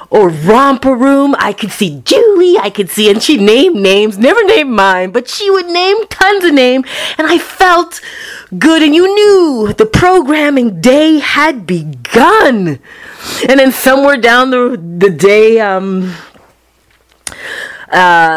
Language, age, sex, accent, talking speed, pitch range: English, 30-49, female, American, 145 wpm, 205-315 Hz